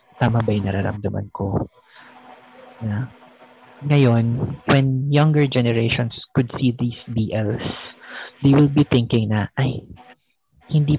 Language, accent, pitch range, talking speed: English, Filipino, 110-130 Hz, 115 wpm